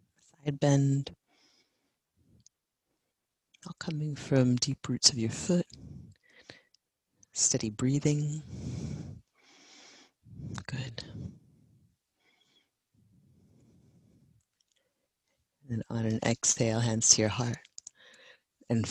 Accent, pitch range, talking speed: American, 115-140 Hz, 65 wpm